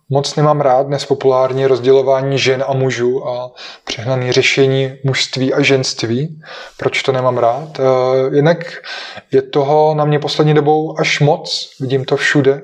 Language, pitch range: Czech, 135-160 Hz